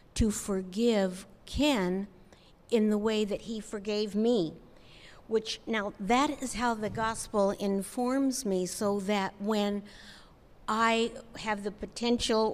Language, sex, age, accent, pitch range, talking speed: English, female, 60-79, American, 185-225 Hz, 125 wpm